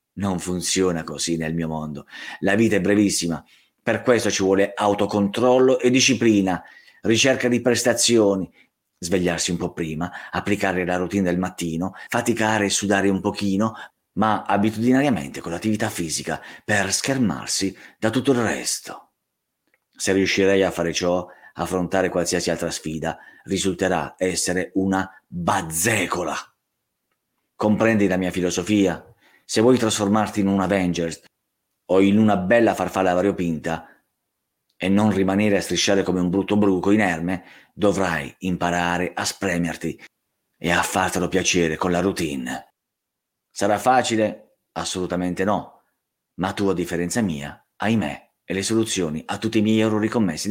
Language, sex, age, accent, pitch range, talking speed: Italian, male, 30-49, native, 85-105 Hz, 135 wpm